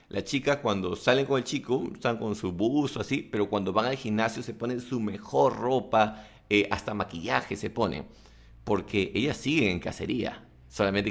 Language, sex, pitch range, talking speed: English, male, 105-130 Hz, 185 wpm